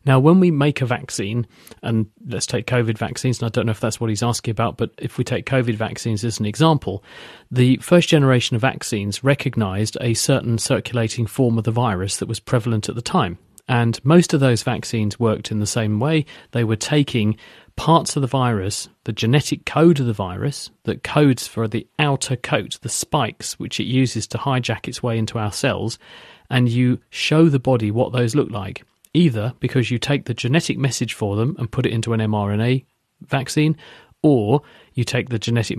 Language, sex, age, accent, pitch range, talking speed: English, male, 40-59, British, 115-135 Hz, 200 wpm